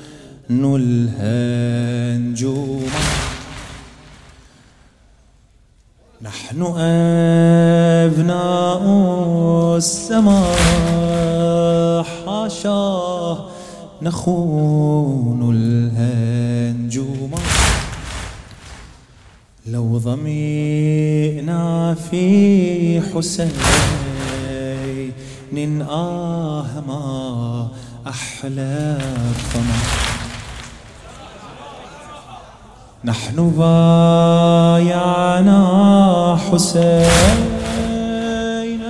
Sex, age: male, 30-49